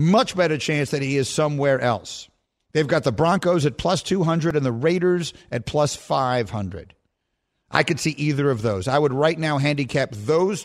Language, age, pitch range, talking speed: English, 50-69, 130-175 Hz, 185 wpm